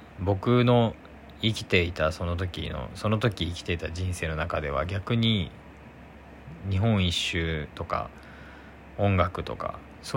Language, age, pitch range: Japanese, 20-39, 75-110 Hz